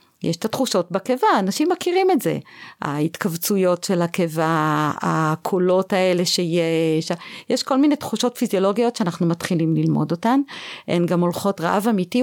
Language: Hebrew